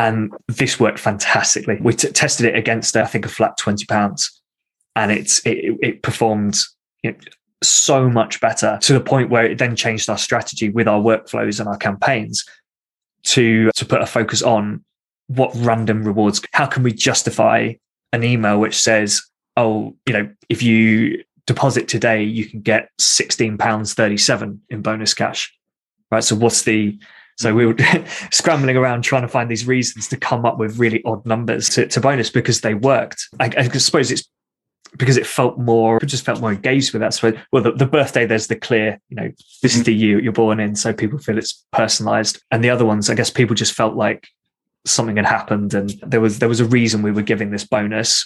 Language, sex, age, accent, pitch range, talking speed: English, male, 20-39, British, 110-125 Hz, 205 wpm